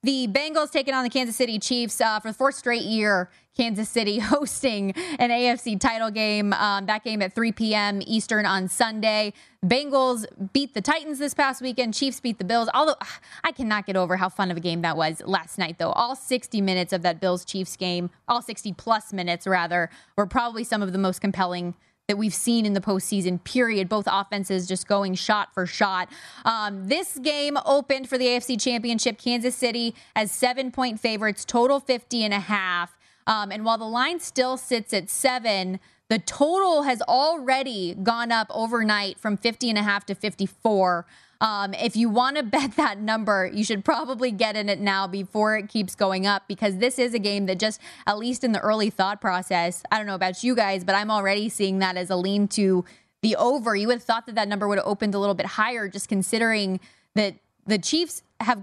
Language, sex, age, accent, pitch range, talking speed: English, female, 20-39, American, 195-250 Hz, 205 wpm